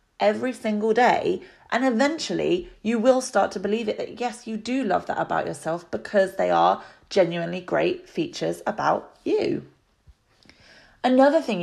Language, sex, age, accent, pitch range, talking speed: English, female, 30-49, British, 170-215 Hz, 150 wpm